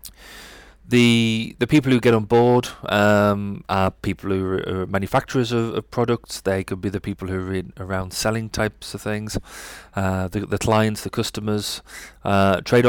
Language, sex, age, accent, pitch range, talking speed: English, male, 30-49, British, 100-115 Hz, 170 wpm